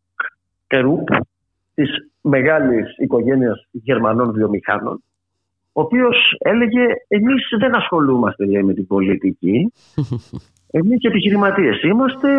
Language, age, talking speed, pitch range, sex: Greek, 50-69, 85 wpm, 110-185 Hz, male